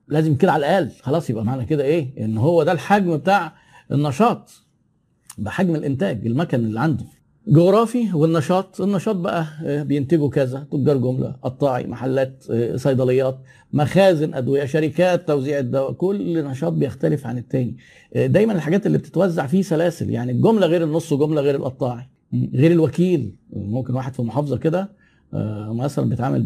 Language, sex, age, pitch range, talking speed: Arabic, male, 50-69, 135-185 Hz, 145 wpm